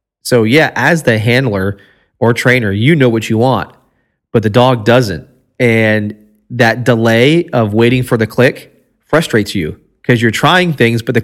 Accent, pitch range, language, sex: American, 110-130 Hz, English, male